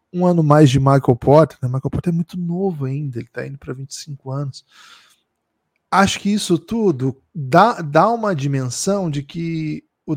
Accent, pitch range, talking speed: Brazilian, 130-165 Hz, 175 wpm